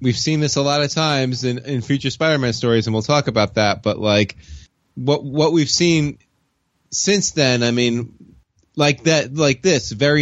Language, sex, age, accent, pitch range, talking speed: English, male, 20-39, American, 100-130 Hz, 190 wpm